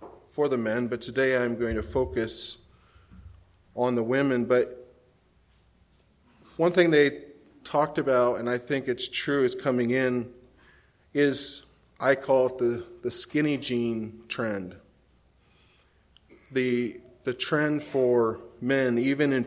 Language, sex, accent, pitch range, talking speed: English, male, American, 110-135 Hz, 130 wpm